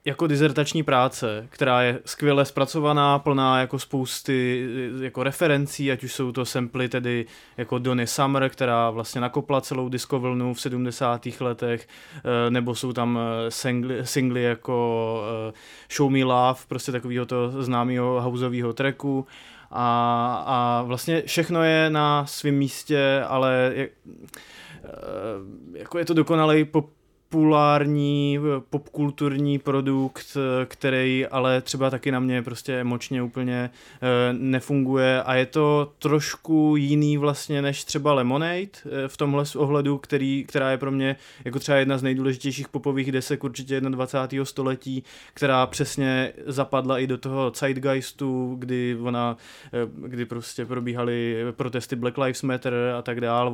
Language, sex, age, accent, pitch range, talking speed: English, male, 20-39, Czech, 125-140 Hz, 130 wpm